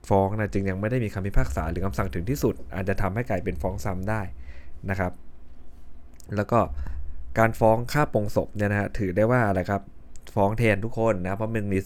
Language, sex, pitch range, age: Thai, male, 90-110 Hz, 20-39